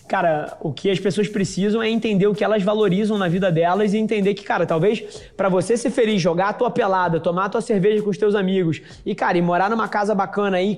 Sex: male